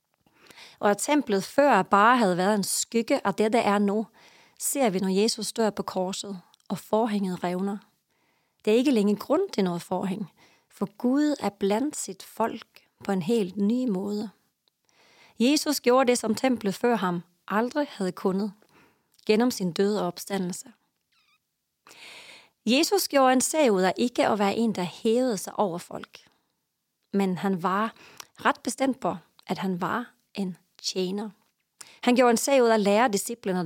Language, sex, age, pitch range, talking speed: English, female, 30-49, 185-235 Hz, 160 wpm